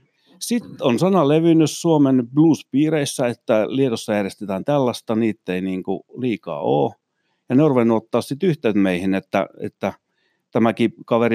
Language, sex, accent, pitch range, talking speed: Finnish, male, native, 100-120 Hz, 130 wpm